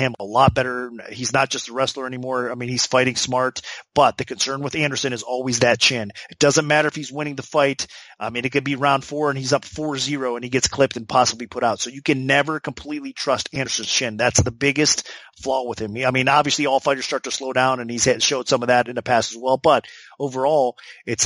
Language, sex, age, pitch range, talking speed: English, male, 30-49, 120-140 Hz, 250 wpm